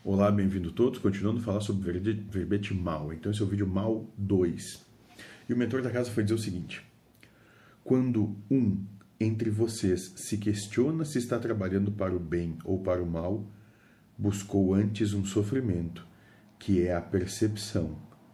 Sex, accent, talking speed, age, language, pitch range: male, Brazilian, 165 wpm, 40-59, Portuguese, 95-110 Hz